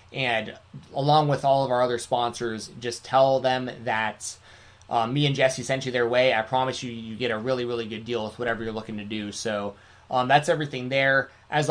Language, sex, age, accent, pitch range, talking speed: English, male, 20-39, American, 115-135 Hz, 215 wpm